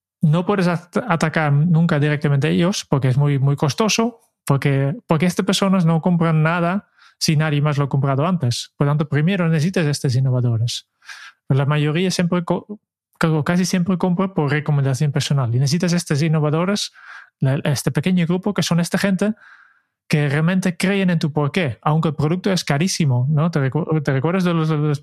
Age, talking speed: 20-39, 180 wpm